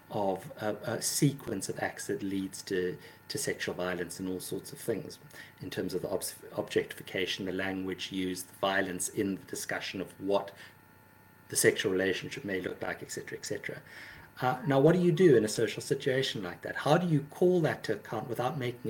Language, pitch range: English, 100-135 Hz